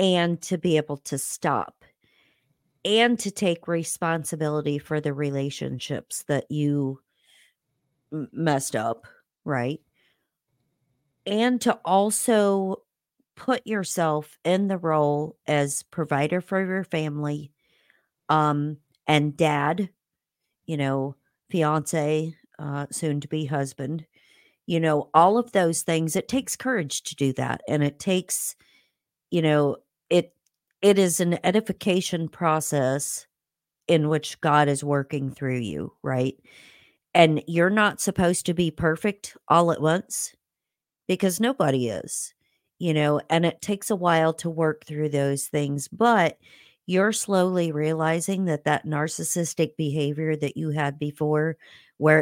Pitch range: 145-175 Hz